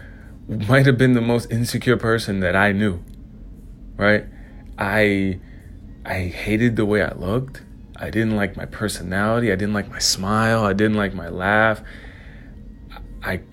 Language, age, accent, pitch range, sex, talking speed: English, 30-49, American, 95-115 Hz, male, 150 wpm